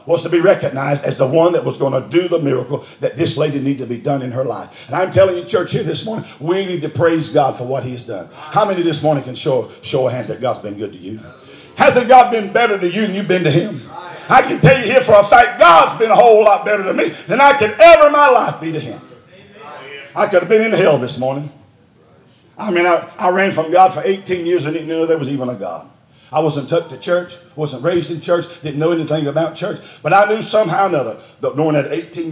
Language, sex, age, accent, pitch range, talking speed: English, male, 50-69, American, 140-175 Hz, 265 wpm